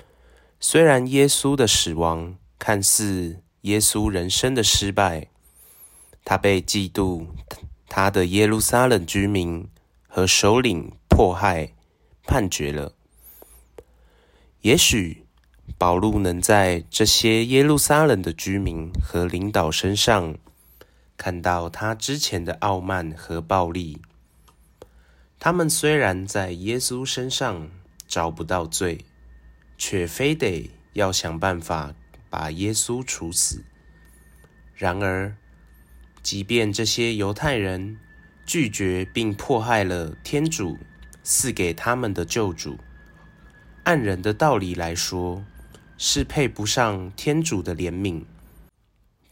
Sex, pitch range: male, 85-110 Hz